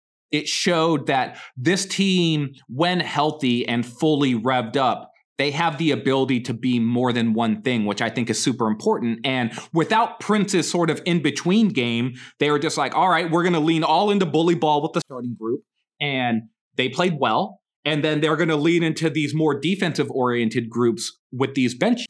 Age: 30-49